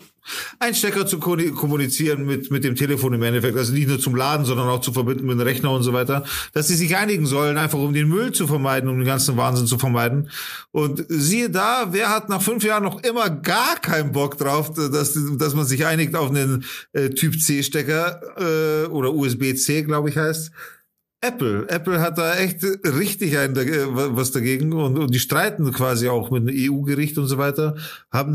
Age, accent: 40-59, German